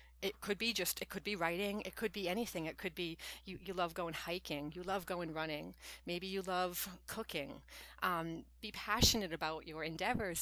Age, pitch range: 40-59, 150-200 Hz